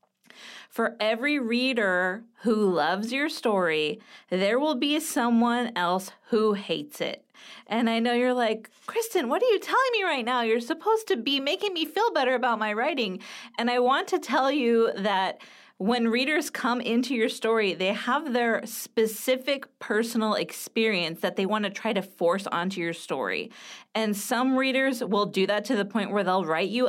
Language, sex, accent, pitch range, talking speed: English, female, American, 205-265 Hz, 180 wpm